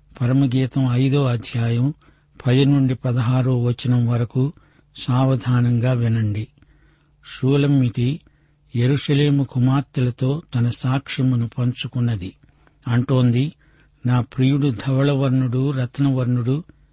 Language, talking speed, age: Telugu, 75 wpm, 60-79